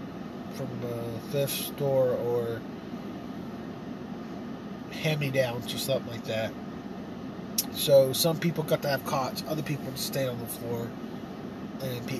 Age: 30-49